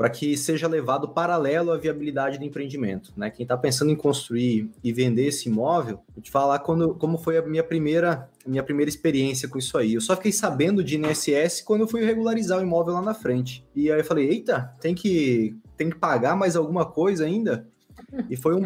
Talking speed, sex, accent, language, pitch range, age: 210 wpm, male, Brazilian, Portuguese, 135-185 Hz, 20-39